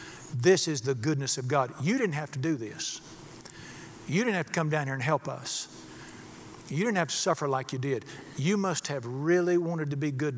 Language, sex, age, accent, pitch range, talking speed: English, male, 60-79, American, 135-175 Hz, 220 wpm